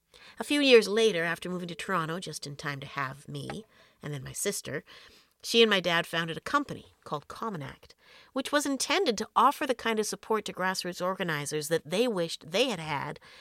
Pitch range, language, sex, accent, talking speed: 155-220 Hz, English, female, American, 205 wpm